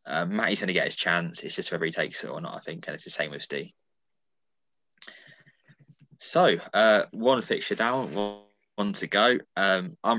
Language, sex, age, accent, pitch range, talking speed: English, male, 20-39, British, 85-105 Hz, 200 wpm